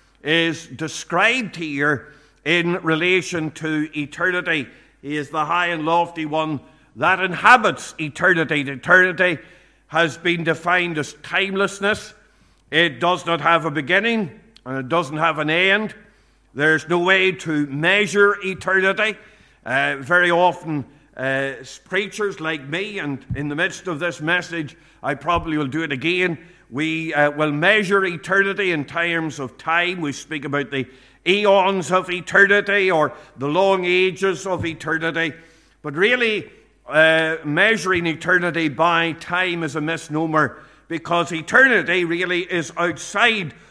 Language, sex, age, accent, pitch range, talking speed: English, male, 50-69, Irish, 155-185 Hz, 135 wpm